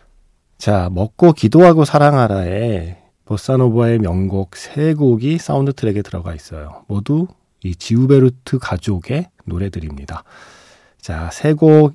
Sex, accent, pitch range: male, native, 90-145 Hz